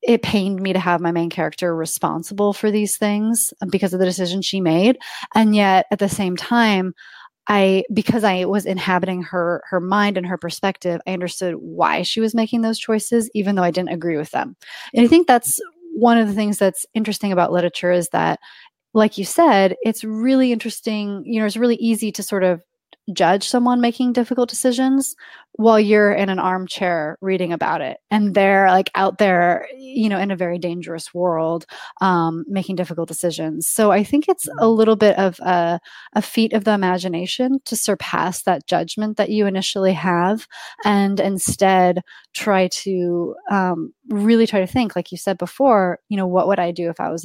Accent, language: American, English